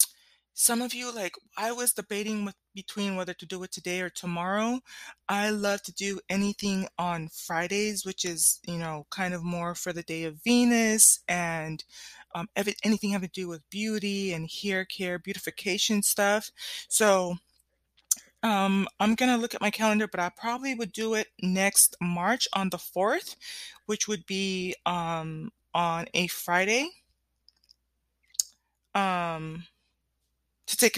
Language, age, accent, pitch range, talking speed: English, 30-49, American, 175-225 Hz, 155 wpm